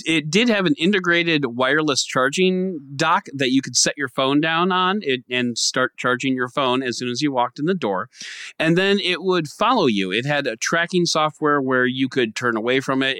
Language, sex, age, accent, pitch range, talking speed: English, male, 30-49, American, 125-155 Hz, 220 wpm